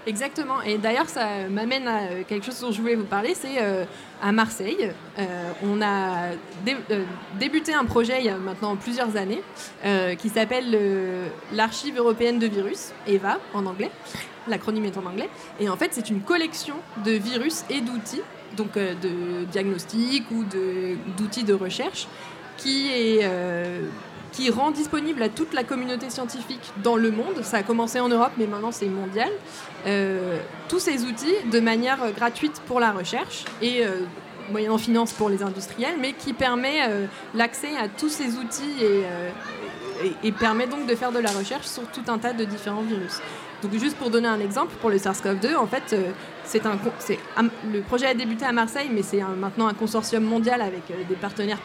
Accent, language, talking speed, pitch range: French, French, 185 wpm, 200-245 Hz